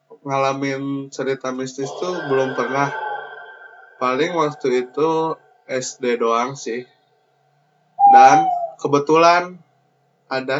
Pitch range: 130-165 Hz